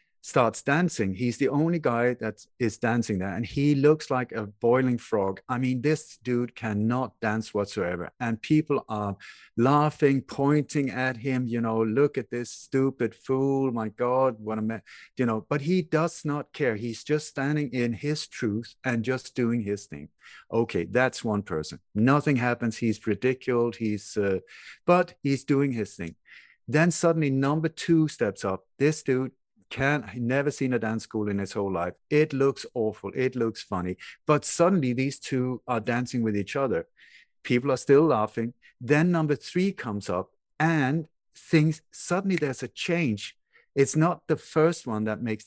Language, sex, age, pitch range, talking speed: English, male, 50-69, 110-150 Hz, 175 wpm